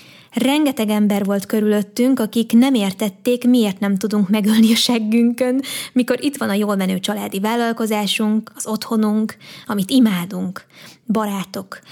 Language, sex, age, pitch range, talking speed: Hungarian, female, 20-39, 205-245 Hz, 130 wpm